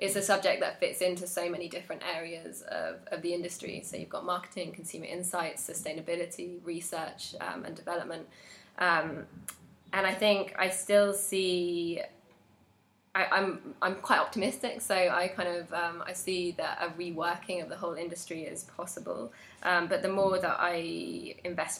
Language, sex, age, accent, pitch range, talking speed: English, female, 20-39, British, 170-195 Hz, 165 wpm